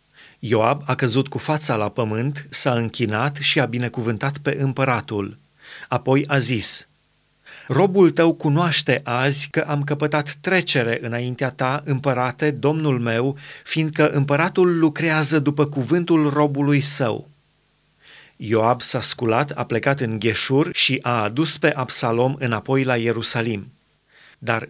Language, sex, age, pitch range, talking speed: Romanian, male, 30-49, 125-155 Hz, 130 wpm